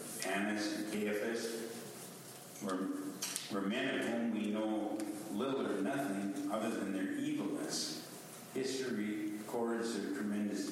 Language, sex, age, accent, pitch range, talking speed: English, male, 60-79, American, 105-140 Hz, 120 wpm